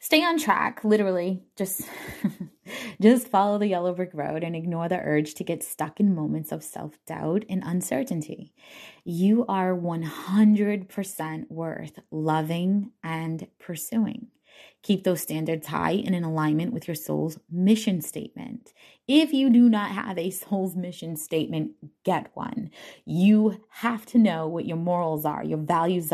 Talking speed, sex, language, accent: 145 wpm, female, English, American